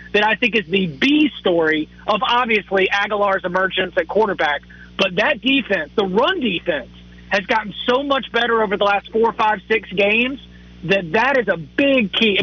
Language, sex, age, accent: English, male, 30-49, American